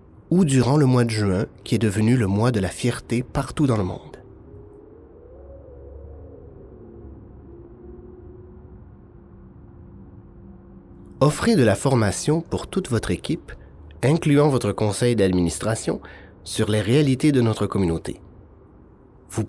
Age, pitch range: 30-49, 100-130 Hz